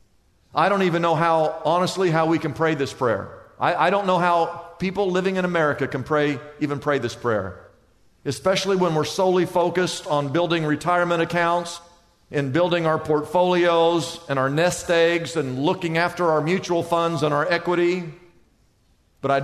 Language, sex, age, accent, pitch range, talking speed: English, male, 50-69, American, 140-200 Hz, 170 wpm